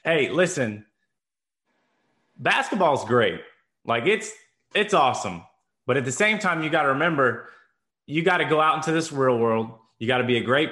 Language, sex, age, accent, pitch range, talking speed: English, male, 20-39, American, 125-160 Hz, 185 wpm